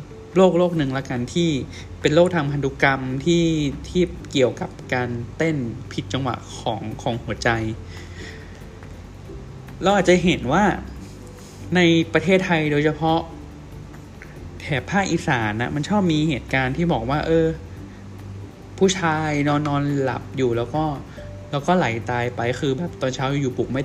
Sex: male